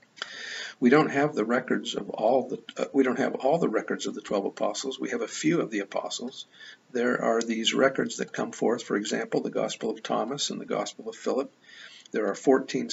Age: 50-69